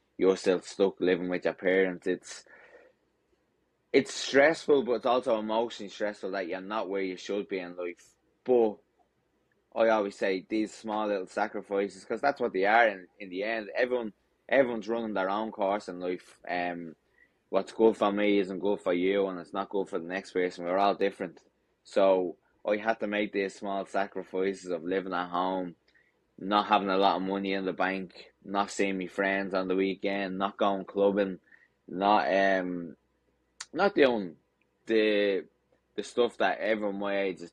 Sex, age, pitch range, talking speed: male, 20-39, 90-105 Hz, 180 wpm